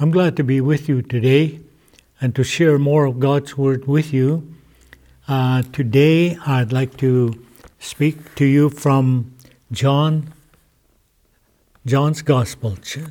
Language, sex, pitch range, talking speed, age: English, male, 130-170 Hz, 125 wpm, 60-79